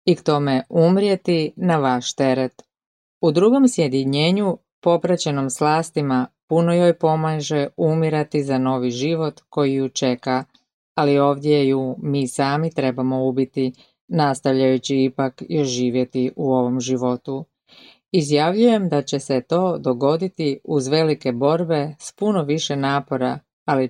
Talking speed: 125 wpm